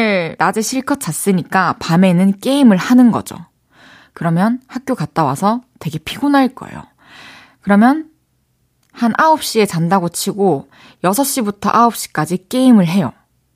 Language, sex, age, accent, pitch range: Korean, female, 20-39, native, 175-250 Hz